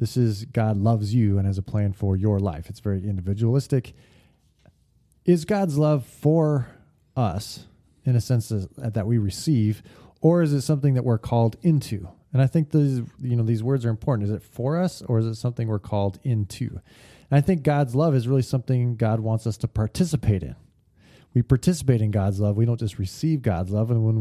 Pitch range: 105-140 Hz